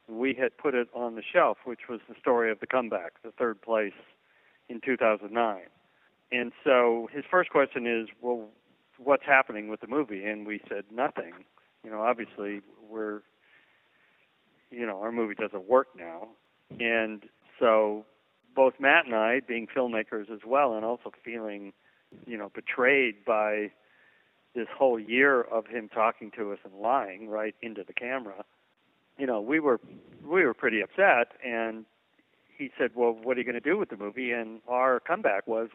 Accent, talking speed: American, 170 wpm